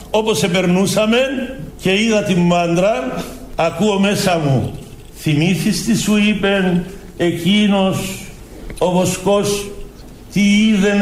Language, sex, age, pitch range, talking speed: Greek, male, 60-79, 150-215 Hz, 100 wpm